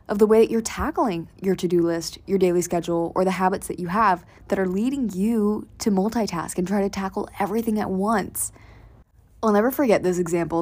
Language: English